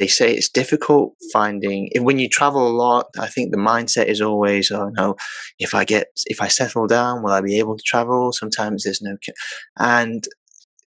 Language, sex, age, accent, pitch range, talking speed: English, male, 20-39, British, 105-140 Hz, 190 wpm